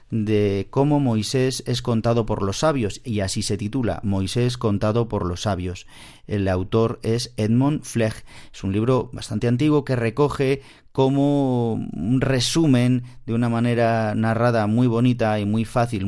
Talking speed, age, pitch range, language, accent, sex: 155 wpm, 40-59, 105-125 Hz, Spanish, Spanish, male